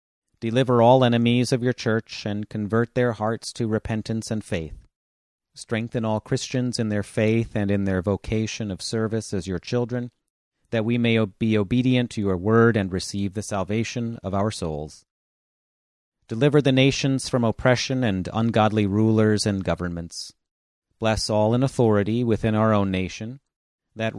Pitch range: 95-115 Hz